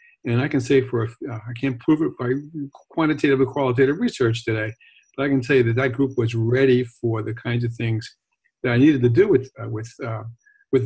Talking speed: 230 wpm